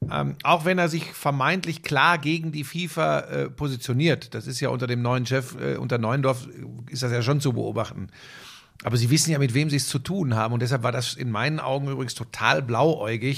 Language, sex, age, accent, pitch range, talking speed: German, male, 50-69, German, 125-165 Hz, 215 wpm